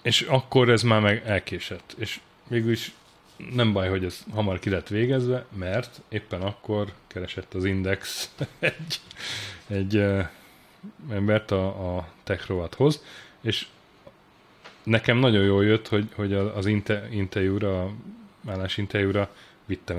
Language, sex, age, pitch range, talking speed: Hungarian, male, 30-49, 95-115 Hz, 115 wpm